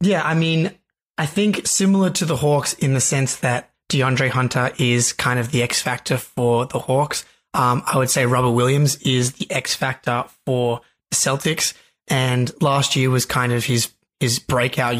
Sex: male